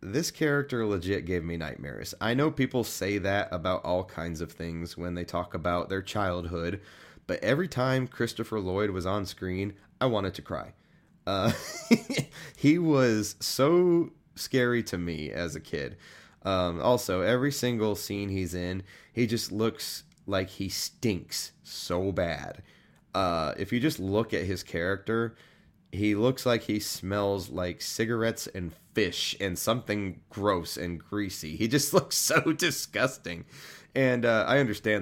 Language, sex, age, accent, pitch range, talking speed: English, male, 20-39, American, 90-115 Hz, 155 wpm